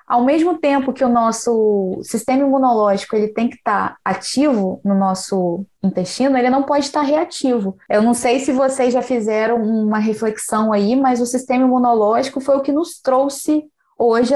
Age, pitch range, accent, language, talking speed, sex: 10-29, 210-260 Hz, Brazilian, Portuguese, 165 wpm, female